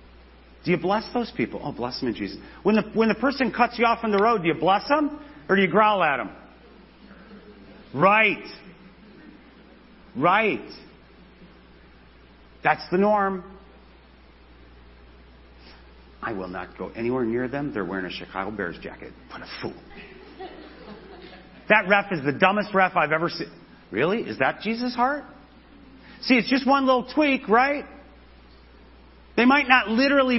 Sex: male